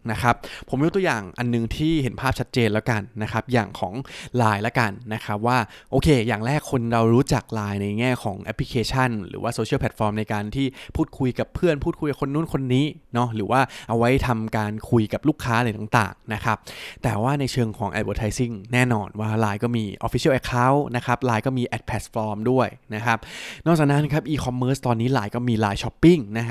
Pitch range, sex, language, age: 110-135 Hz, male, Thai, 20-39